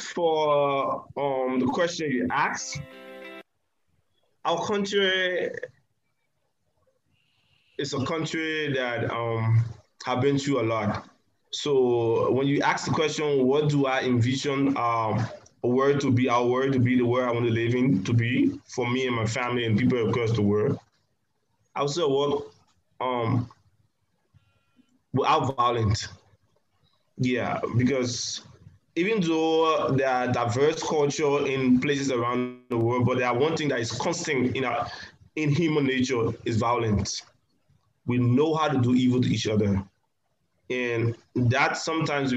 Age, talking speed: 20-39, 145 wpm